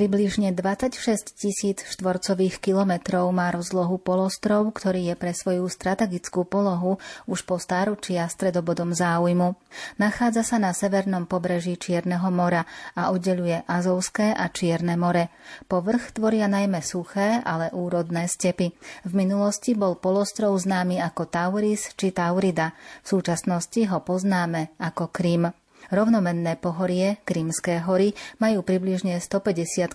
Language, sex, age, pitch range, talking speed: Slovak, female, 30-49, 175-195 Hz, 120 wpm